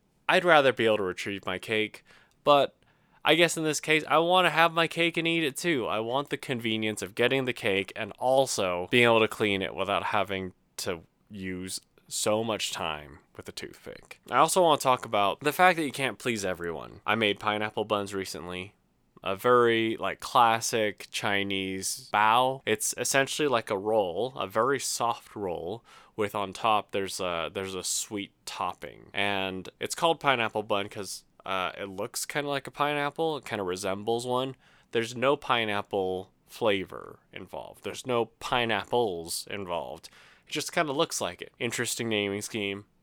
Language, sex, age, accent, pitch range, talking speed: English, male, 20-39, American, 100-135 Hz, 180 wpm